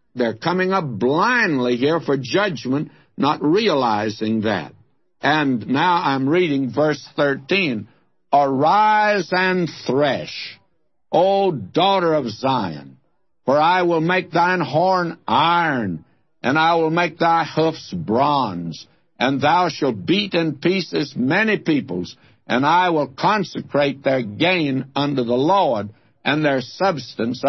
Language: English